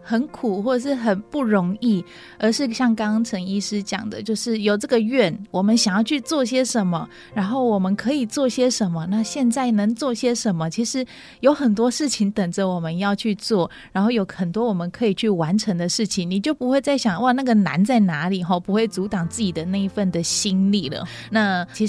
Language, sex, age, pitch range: Chinese, female, 20-39, 185-225 Hz